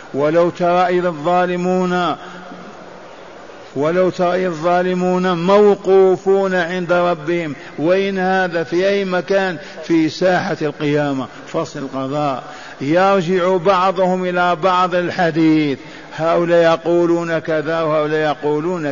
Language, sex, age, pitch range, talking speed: Arabic, male, 50-69, 170-185 Hz, 95 wpm